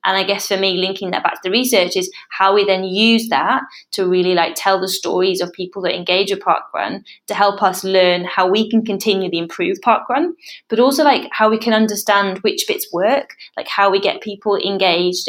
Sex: female